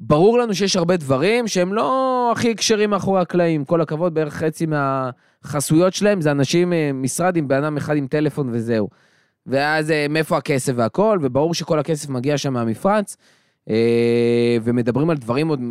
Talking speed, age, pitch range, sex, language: 155 wpm, 20-39, 130-175 Hz, male, Hebrew